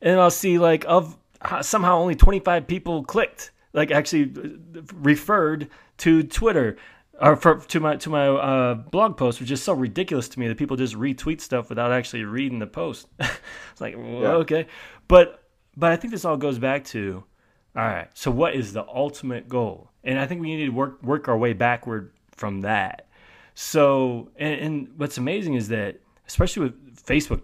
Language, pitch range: English, 115-150 Hz